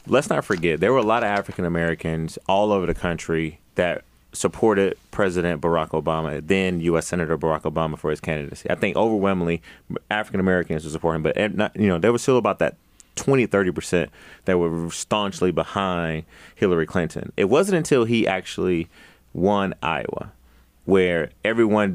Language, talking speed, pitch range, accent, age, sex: English, 170 wpm, 80-100 Hz, American, 30-49, male